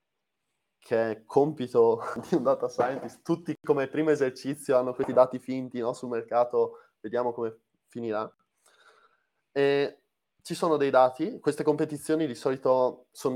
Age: 20-39